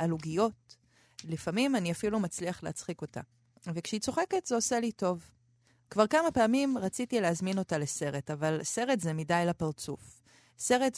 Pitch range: 155-230 Hz